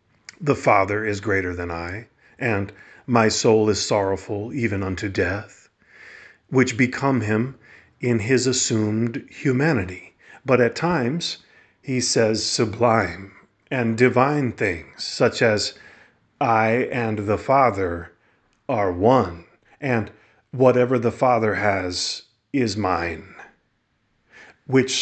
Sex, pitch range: male, 110-130 Hz